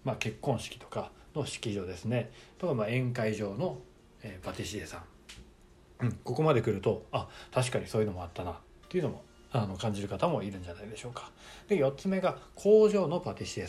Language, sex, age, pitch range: Japanese, male, 40-59, 105-170 Hz